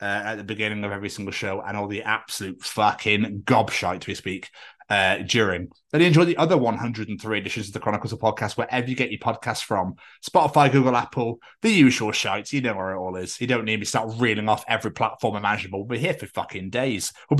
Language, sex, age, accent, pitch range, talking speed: English, male, 20-39, British, 110-150 Hz, 225 wpm